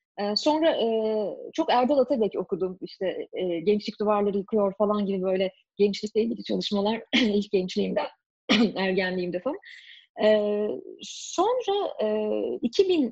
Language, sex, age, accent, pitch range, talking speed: Turkish, female, 30-49, native, 195-275 Hz, 95 wpm